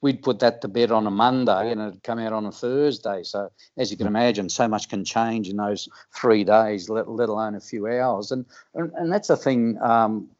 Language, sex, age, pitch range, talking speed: English, male, 50-69, 110-120 Hz, 235 wpm